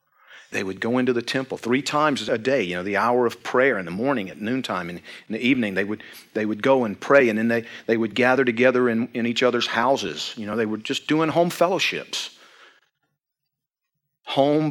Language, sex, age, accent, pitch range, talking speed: English, male, 40-59, American, 120-145 Hz, 215 wpm